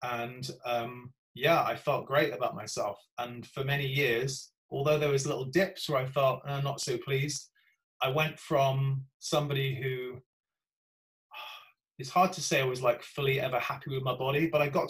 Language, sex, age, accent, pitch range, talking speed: English, male, 20-39, British, 125-155 Hz, 180 wpm